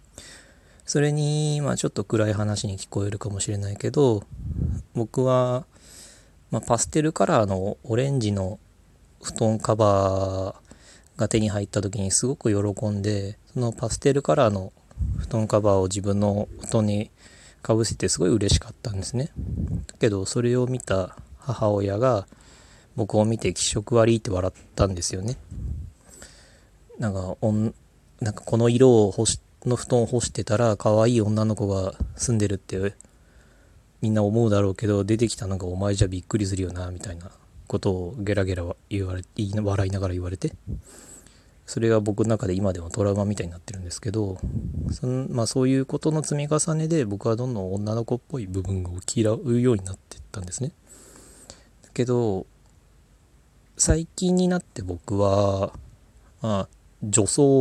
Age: 20-39